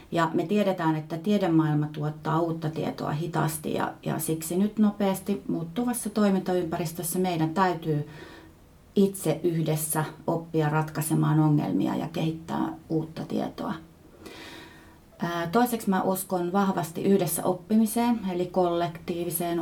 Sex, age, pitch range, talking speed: female, 30-49, 155-190 Hz, 105 wpm